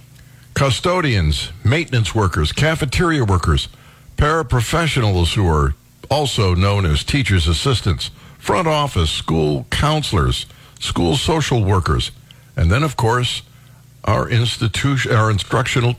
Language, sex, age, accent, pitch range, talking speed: English, male, 60-79, American, 100-130 Hz, 105 wpm